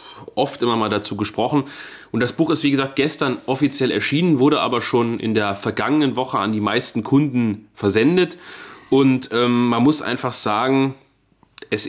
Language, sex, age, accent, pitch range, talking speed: German, male, 30-49, German, 110-135 Hz, 165 wpm